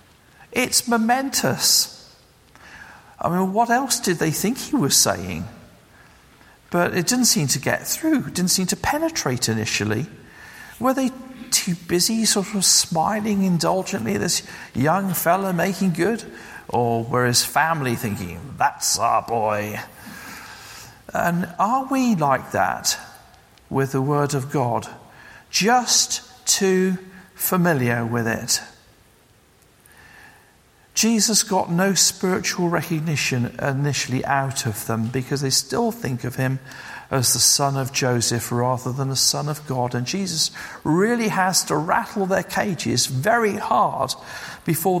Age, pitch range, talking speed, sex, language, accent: 50-69, 135-210 Hz, 130 wpm, male, English, British